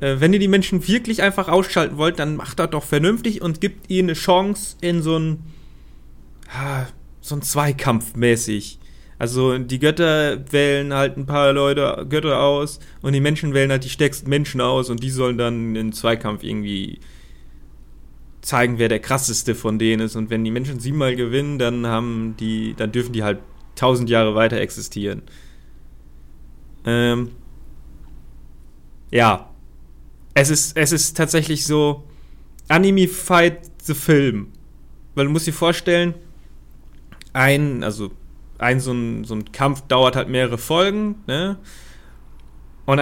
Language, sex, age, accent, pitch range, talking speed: German, male, 30-49, German, 110-155 Hz, 150 wpm